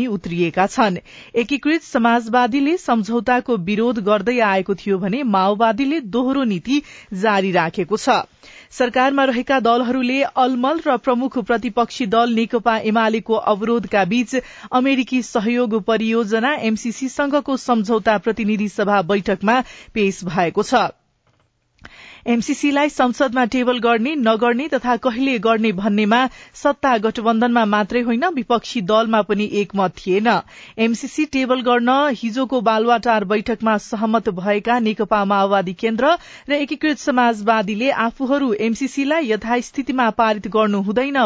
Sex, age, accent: female, 40-59, Indian